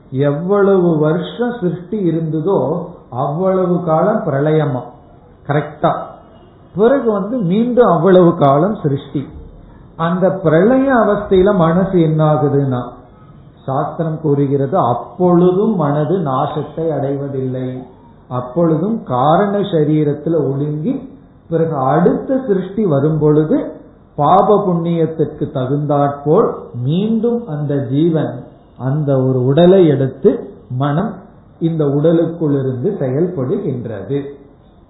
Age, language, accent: 50-69, Tamil, native